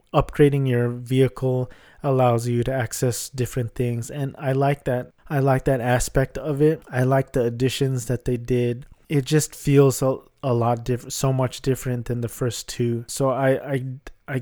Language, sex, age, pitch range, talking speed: English, male, 20-39, 120-135 Hz, 180 wpm